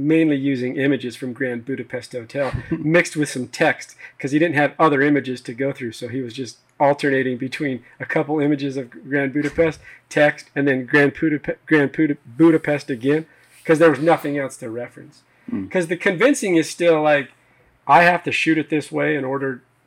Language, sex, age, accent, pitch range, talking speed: English, male, 40-59, American, 125-150 Hz, 180 wpm